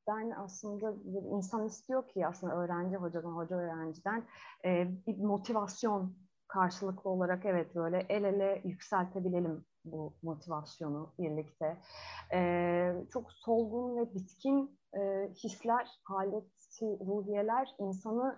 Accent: native